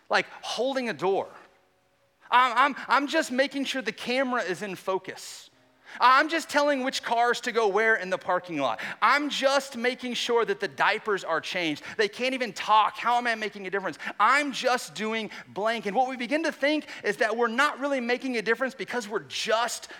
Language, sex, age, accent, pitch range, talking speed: English, male, 30-49, American, 175-255 Hz, 200 wpm